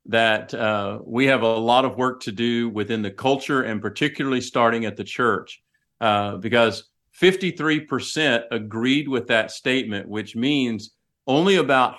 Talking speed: 155 wpm